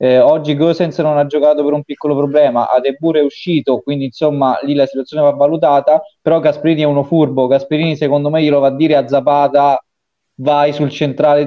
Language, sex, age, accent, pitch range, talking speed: Italian, male, 20-39, native, 135-160 Hz, 195 wpm